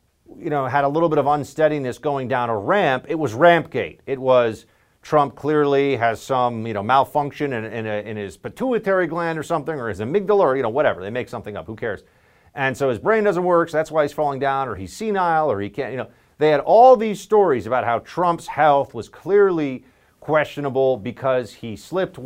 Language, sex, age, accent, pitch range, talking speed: English, male, 40-59, American, 110-155 Hz, 220 wpm